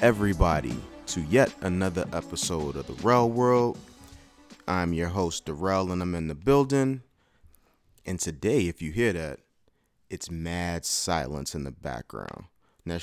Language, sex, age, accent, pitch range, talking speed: English, male, 30-49, American, 80-95 Hz, 145 wpm